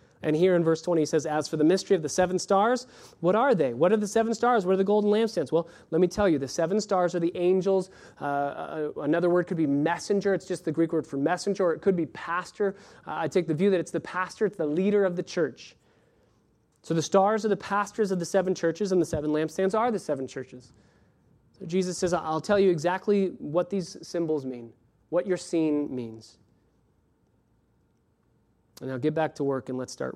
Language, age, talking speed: English, 30-49, 225 wpm